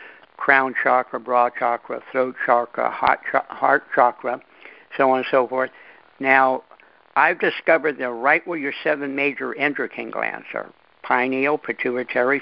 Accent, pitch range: American, 130-150 Hz